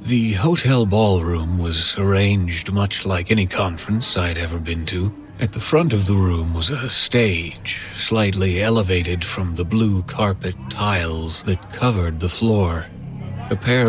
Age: 40-59